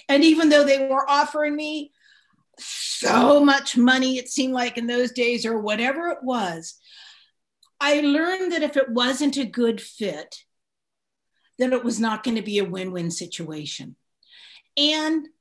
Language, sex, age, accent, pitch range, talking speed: English, female, 50-69, American, 230-295 Hz, 155 wpm